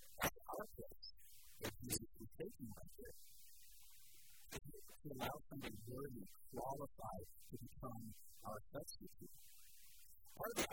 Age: 50-69